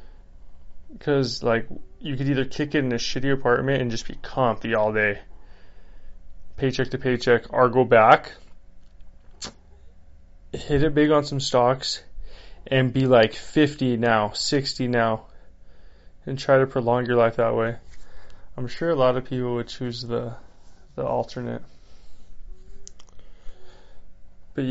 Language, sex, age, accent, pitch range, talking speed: English, male, 20-39, American, 90-130 Hz, 135 wpm